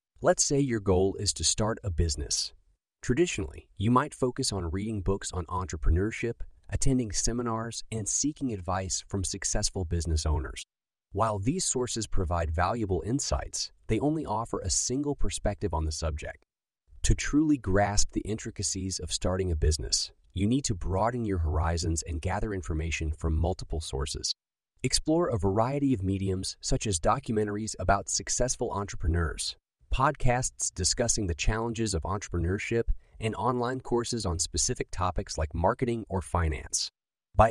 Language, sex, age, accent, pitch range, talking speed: English, male, 30-49, American, 90-115 Hz, 145 wpm